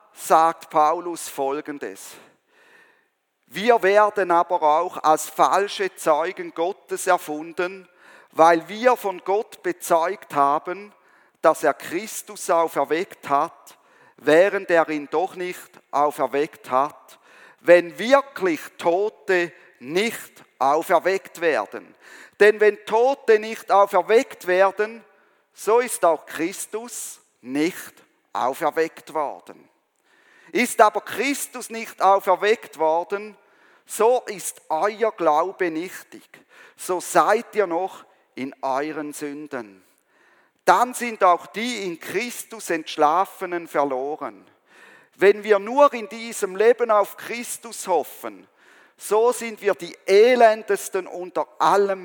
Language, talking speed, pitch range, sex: German, 105 wpm, 160-220 Hz, male